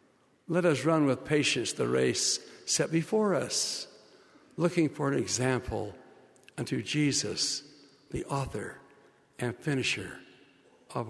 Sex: male